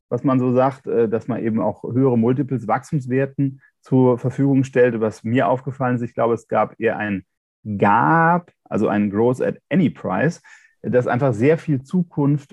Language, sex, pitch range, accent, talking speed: German, male, 110-135 Hz, German, 175 wpm